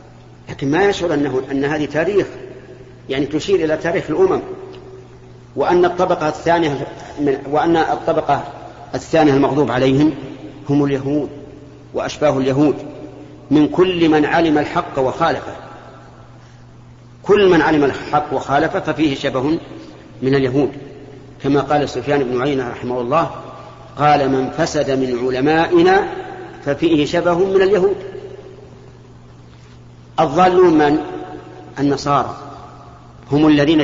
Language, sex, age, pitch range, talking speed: Arabic, male, 50-69, 125-160 Hz, 105 wpm